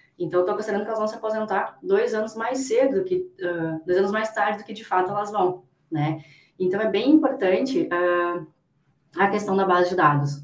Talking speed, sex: 220 wpm, female